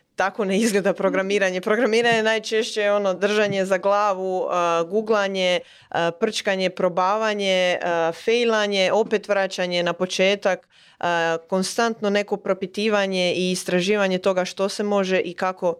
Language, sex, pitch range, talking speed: Croatian, female, 170-200 Hz, 130 wpm